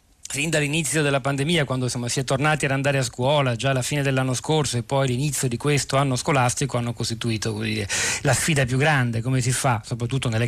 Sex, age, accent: male, 40-59, native